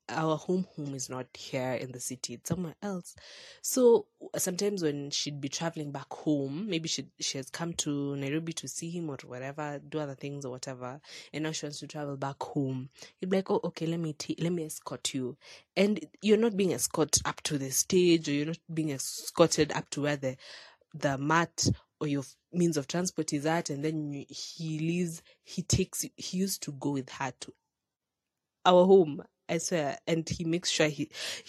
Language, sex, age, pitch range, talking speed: English, female, 20-39, 145-185 Hz, 205 wpm